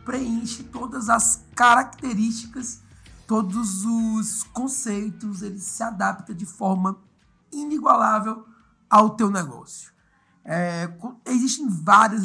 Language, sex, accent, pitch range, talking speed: Portuguese, male, Brazilian, 180-230 Hz, 95 wpm